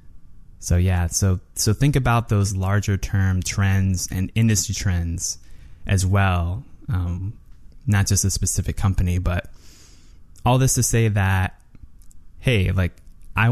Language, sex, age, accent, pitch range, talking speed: English, male, 20-39, American, 90-110 Hz, 135 wpm